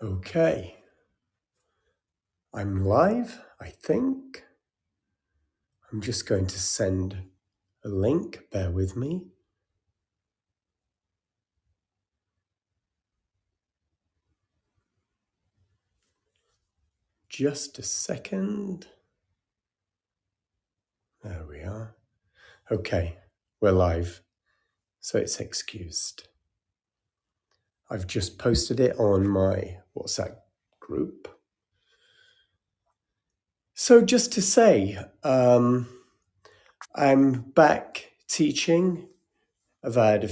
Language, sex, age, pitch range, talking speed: English, male, 50-69, 95-120 Hz, 70 wpm